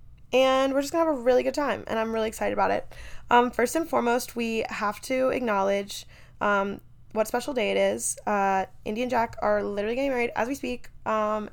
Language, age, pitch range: English, 10-29, 205-270 Hz